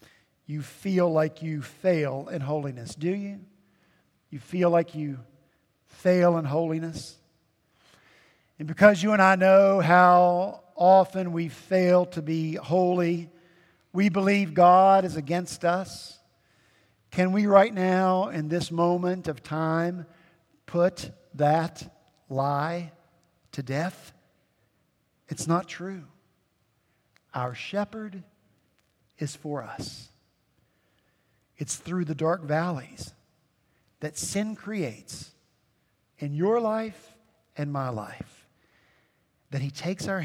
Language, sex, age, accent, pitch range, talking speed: English, male, 50-69, American, 150-190 Hz, 110 wpm